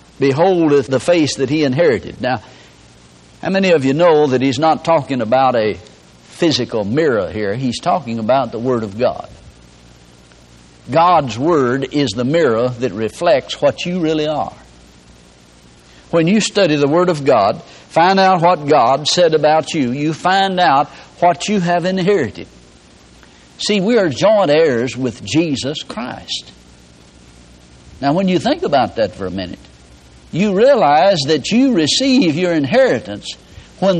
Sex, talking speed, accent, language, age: male, 150 wpm, American, English, 60-79